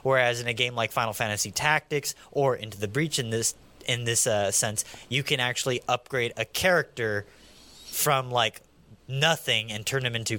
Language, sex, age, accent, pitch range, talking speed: English, male, 20-39, American, 115-150 Hz, 180 wpm